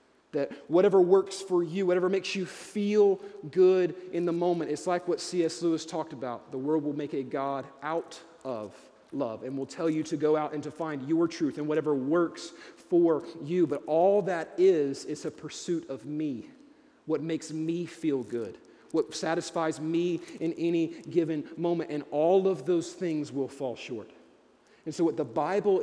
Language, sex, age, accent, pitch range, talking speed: English, male, 30-49, American, 155-195 Hz, 185 wpm